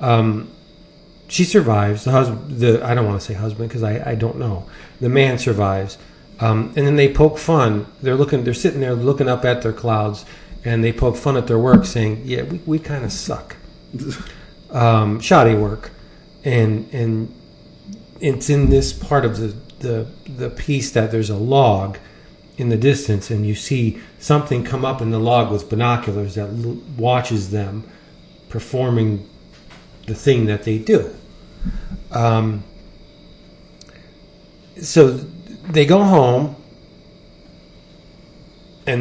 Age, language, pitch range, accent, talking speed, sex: 40-59, English, 110-145 Hz, American, 150 wpm, male